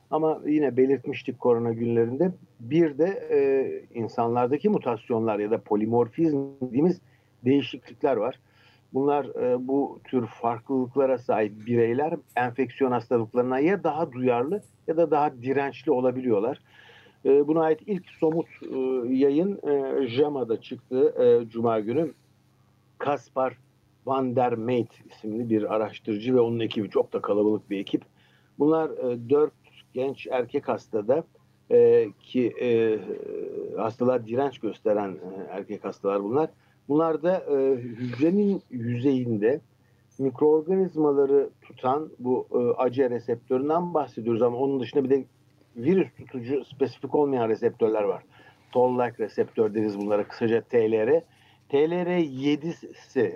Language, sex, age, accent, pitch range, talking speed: Turkish, male, 60-79, native, 120-160 Hz, 120 wpm